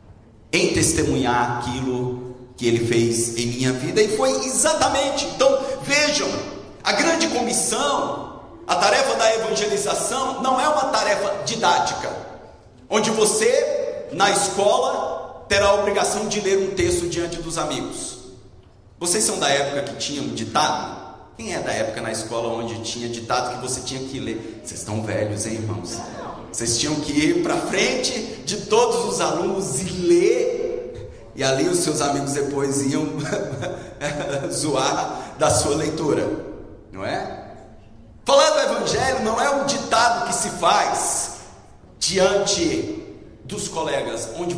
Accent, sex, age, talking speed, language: Brazilian, male, 40-59, 140 wpm, English